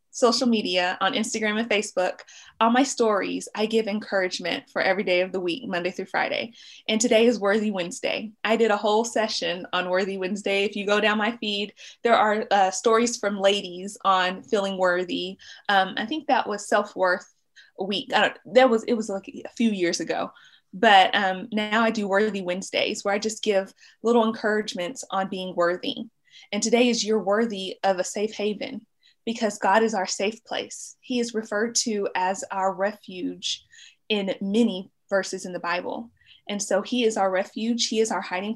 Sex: female